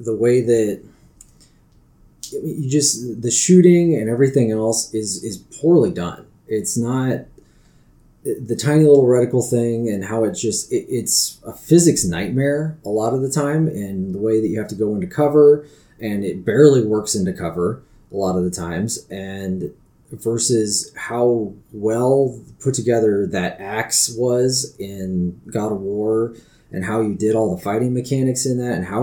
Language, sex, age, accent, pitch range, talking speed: English, male, 30-49, American, 100-130 Hz, 165 wpm